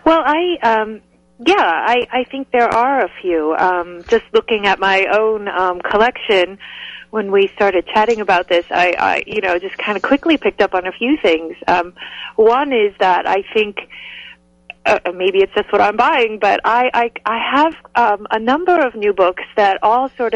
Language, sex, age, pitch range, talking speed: English, female, 30-49, 185-235 Hz, 195 wpm